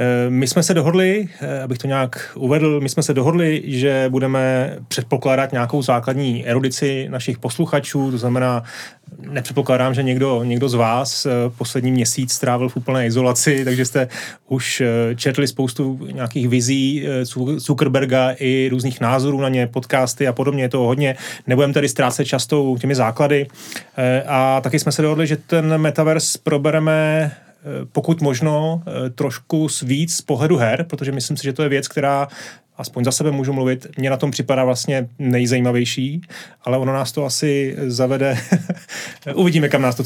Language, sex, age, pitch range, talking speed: Czech, male, 30-49, 130-155 Hz, 155 wpm